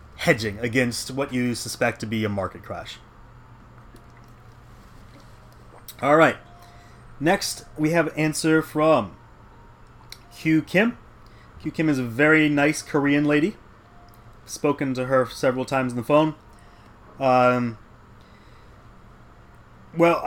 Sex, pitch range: male, 115-150 Hz